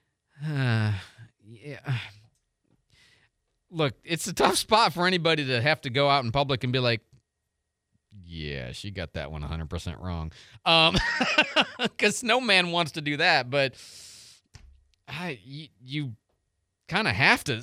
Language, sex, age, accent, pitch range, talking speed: English, male, 30-49, American, 115-160 Hz, 145 wpm